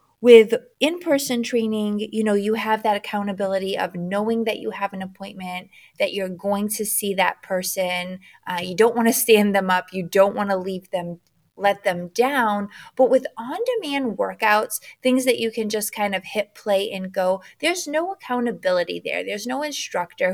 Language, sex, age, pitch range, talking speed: English, female, 20-39, 185-235 Hz, 190 wpm